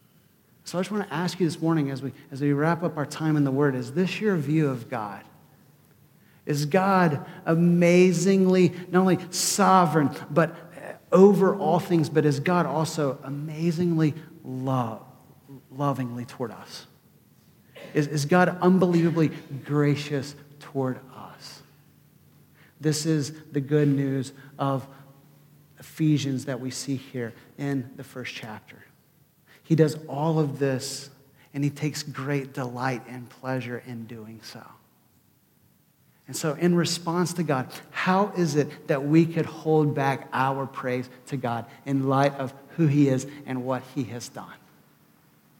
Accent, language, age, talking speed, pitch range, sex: American, English, 40-59, 145 wpm, 135-165 Hz, male